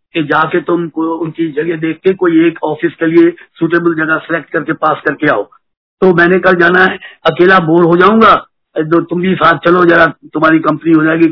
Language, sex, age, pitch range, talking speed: Hindi, male, 50-69, 160-185 Hz, 195 wpm